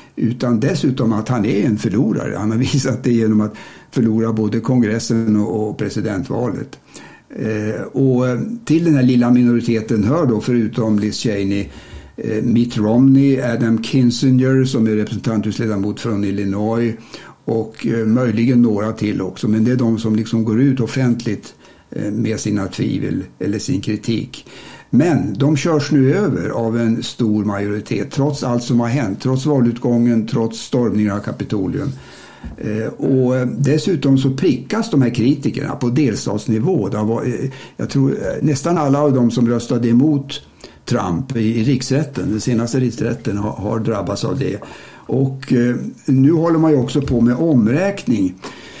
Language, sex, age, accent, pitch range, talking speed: Swedish, male, 60-79, Norwegian, 110-135 Hz, 150 wpm